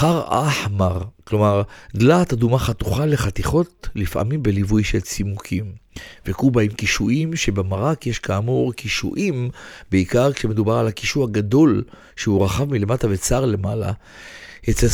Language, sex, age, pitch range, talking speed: Hebrew, male, 50-69, 100-130 Hz, 115 wpm